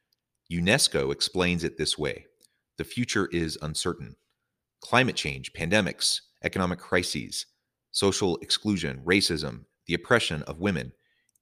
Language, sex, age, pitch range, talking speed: English, male, 30-49, 80-100 Hz, 110 wpm